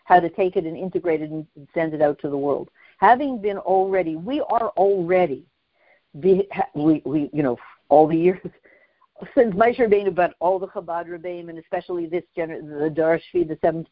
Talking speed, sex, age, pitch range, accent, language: 185 wpm, female, 60-79, 155-195 Hz, American, English